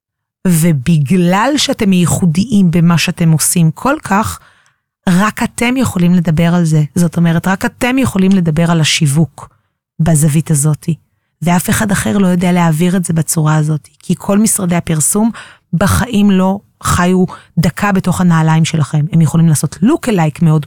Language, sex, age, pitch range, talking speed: Hebrew, female, 30-49, 160-195 Hz, 150 wpm